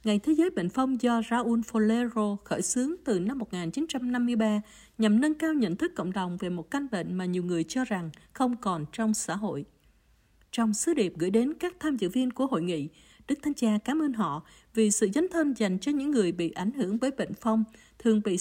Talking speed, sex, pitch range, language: 220 wpm, female, 195-265 Hz, Vietnamese